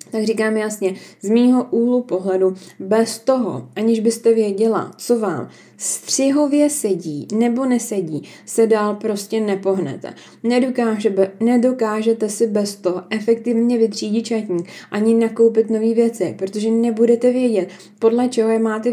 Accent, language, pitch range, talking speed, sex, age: native, Czech, 190-230 Hz, 125 wpm, female, 20-39